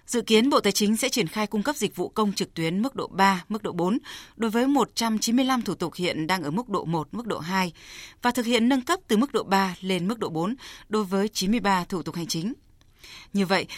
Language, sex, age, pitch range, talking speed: Vietnamese, female, 20-39, 175-220 Hz, 250 wpm